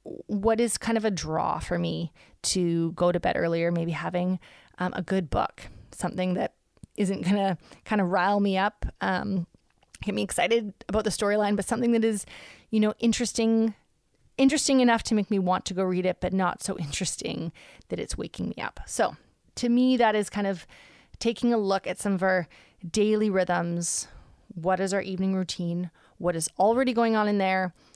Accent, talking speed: American, 195 wpm